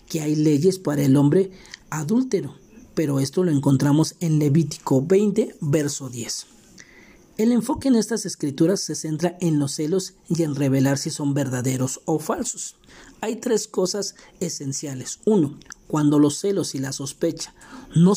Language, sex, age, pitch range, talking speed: Spanish, male, 40-59, 140-185 Hz, 150 wpm